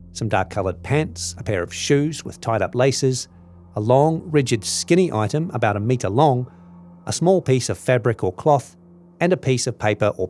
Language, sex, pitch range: English, male, 110-145 Hz